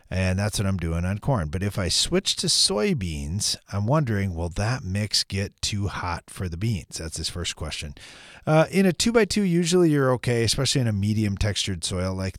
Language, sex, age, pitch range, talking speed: English, male, 30-49, 85-125 Hz, 215 wpm